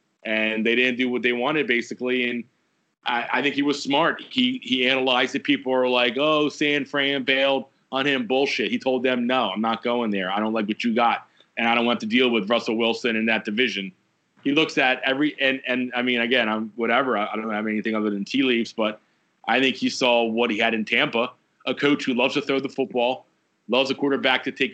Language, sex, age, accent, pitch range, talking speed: English, male, 30-49, American, 125-140 Hz, 240 wpm